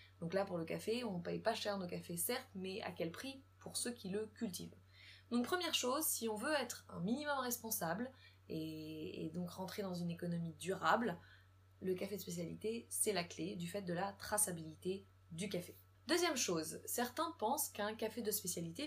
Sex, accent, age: female, French, 20-39